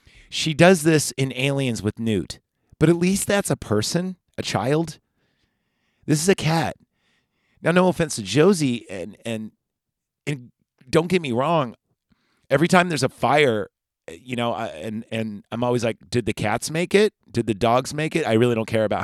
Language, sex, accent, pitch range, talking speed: English, male, American, 105-135 Hz, 185 wpm